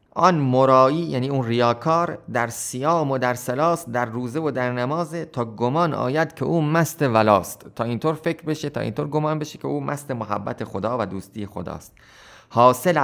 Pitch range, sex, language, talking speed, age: 115-150 Hz, male, Persian, 180 wpm, 30-49